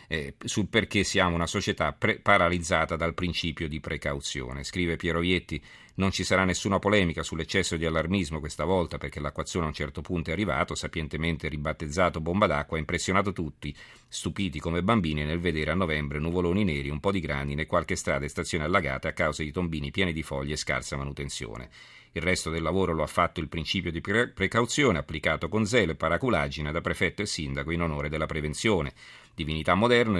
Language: Italian